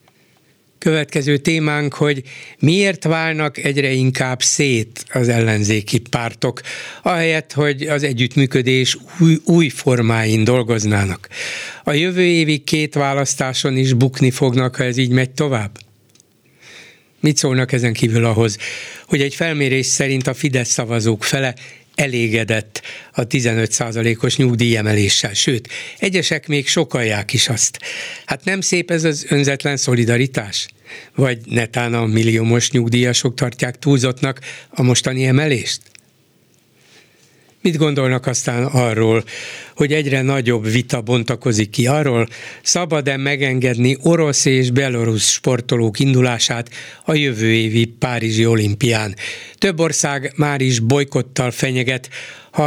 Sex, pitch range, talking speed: male, 120-150 Hz, 115 wpm